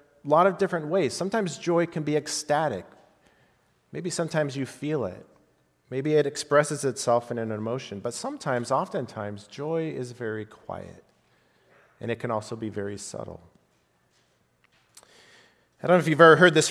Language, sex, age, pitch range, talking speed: English, male, 40-59, 110-150 Hz, 155 wpm